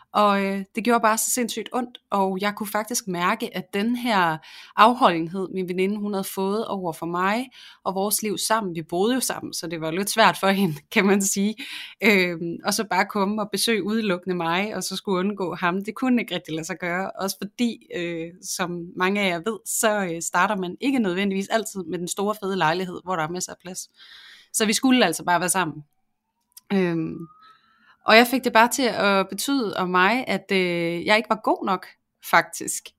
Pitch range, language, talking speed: 180-220 Hz, Danish, 210 wpm